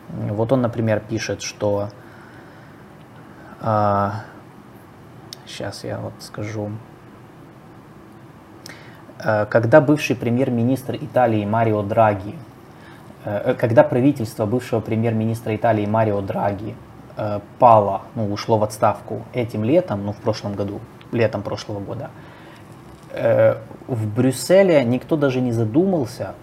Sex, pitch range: male, 110-130 Hz